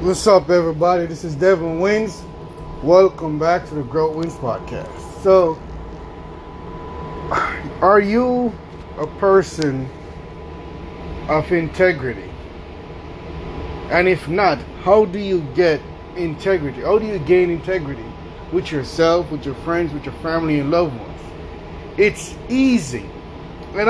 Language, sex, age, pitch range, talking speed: English, male, 30-49, 155-220 Hz, 120 wpm